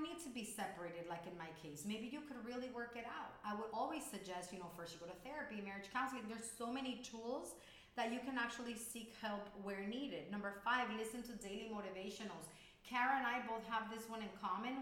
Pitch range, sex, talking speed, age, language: 195-240 Hz, female, 220 wpm, 30-49, English